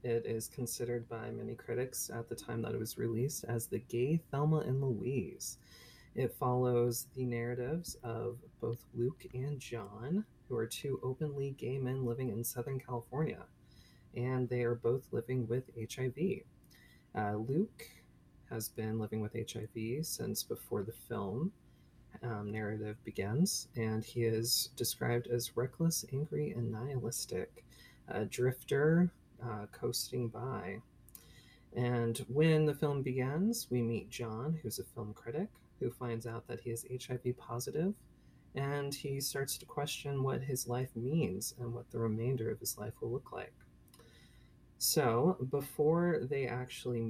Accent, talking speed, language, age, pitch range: American, 150 wpm, English, 20-39, 115-135 Hz